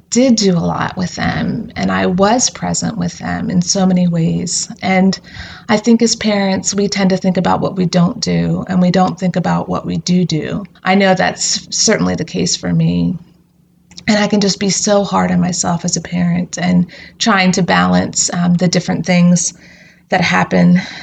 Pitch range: 175-200 Hz